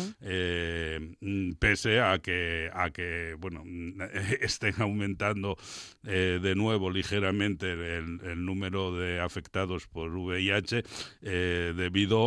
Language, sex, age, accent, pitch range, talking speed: Spanish, male, 60-79, Spanish, 90-110 Hz, 110 wpm